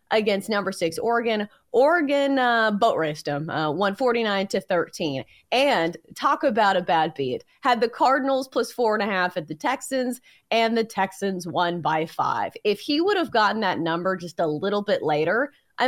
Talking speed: 185 wpm